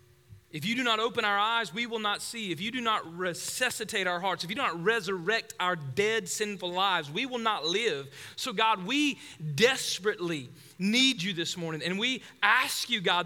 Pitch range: 175-245 Hz